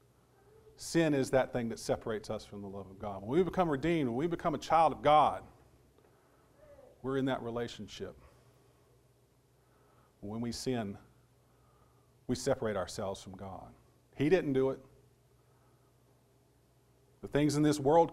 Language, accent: English, American